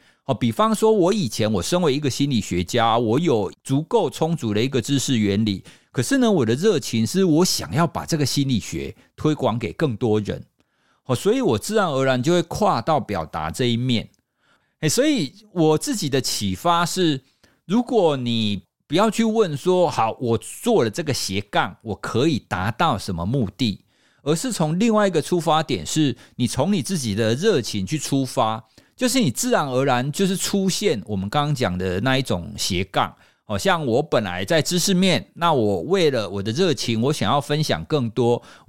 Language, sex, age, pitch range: Chinese, male, 50-69, 110-175 Hz